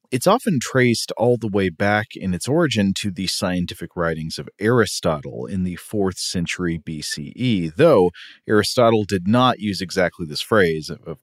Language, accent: English, American